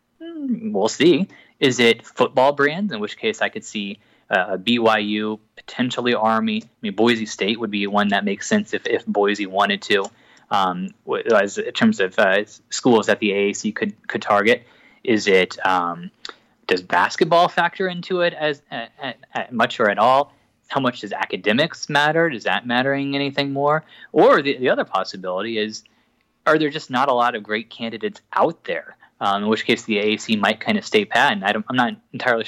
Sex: male